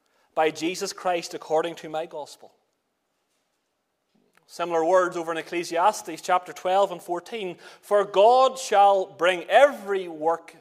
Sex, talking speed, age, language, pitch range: male, 125 wpm, 30-49, English, 165-225 Hz